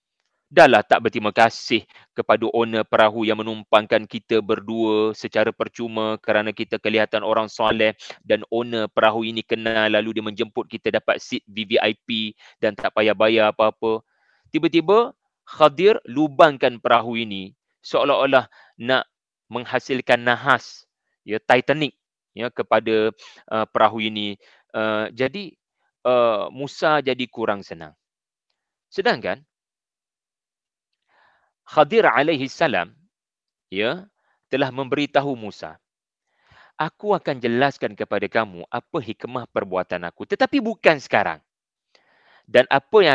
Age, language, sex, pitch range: 30-49, English, male, 110-155 Hz